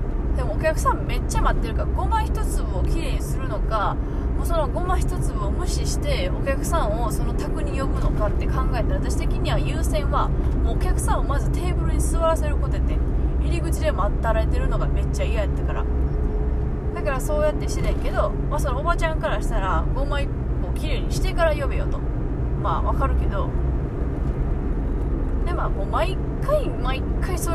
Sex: female